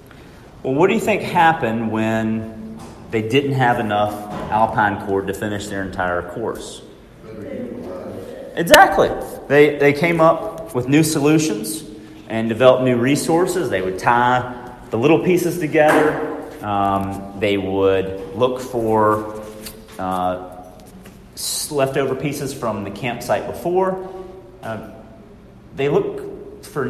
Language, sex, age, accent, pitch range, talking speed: English, male, 30-49, American, 105-150 Hz, 120 wpm